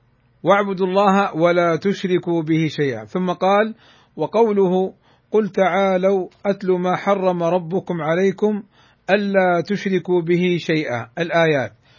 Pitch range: 155-195 Hz